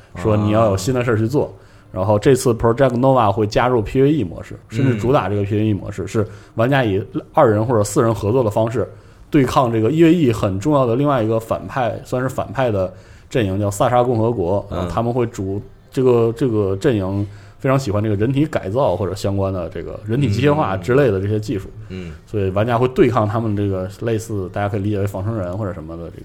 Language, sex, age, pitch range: Chinese, male, 20-39, 95-115 Hz